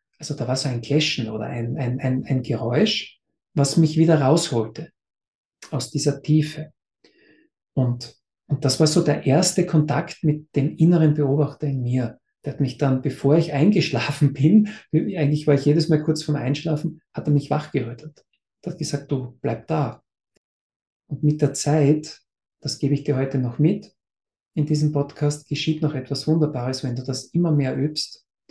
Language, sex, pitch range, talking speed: German, male, 130-155 Hz, 175 wpm